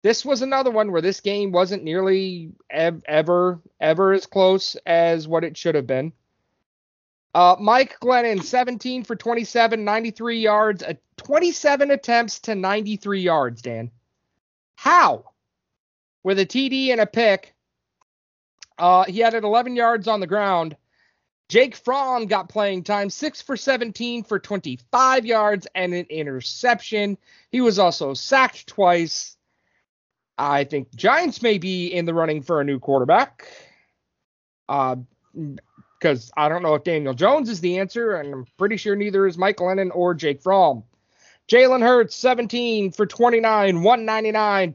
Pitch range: 165-235 Hz